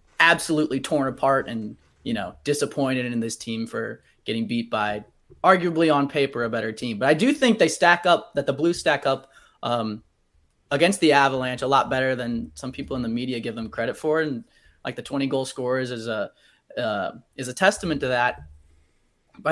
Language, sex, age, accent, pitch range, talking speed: English, male, 20-39, American, 115-145 Hz, 195 wpm